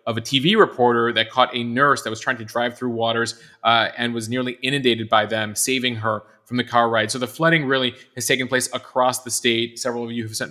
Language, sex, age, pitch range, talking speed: English, male, 30-49, 115-130 Hz, 245 wpm